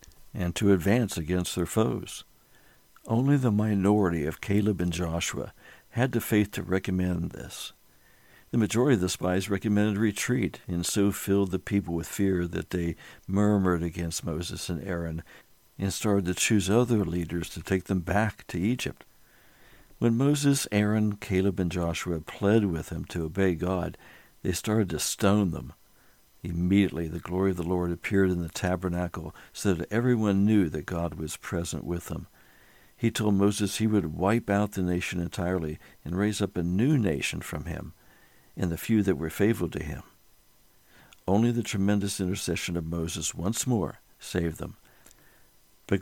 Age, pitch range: 60-79, 85-105 Hz